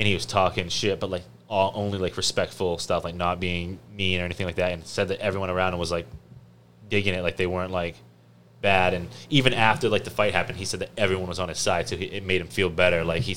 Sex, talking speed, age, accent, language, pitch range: male, 265 wpm, 20-39, American, English, 90-105 Hz